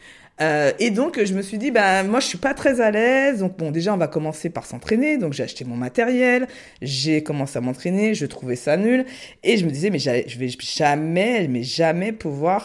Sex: female